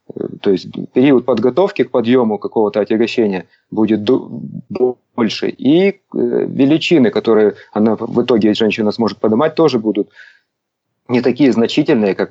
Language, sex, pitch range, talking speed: Russian, male, 110-130 Hz, 135 wpm